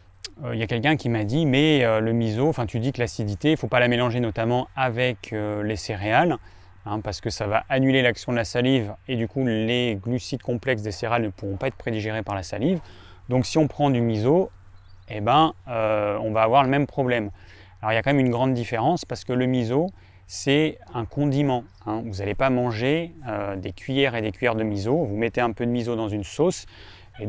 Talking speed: 235 wpm